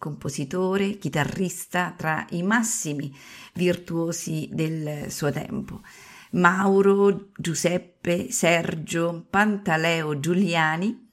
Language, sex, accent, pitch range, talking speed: Italian, female, native, 155-195 Hz, 75 wpm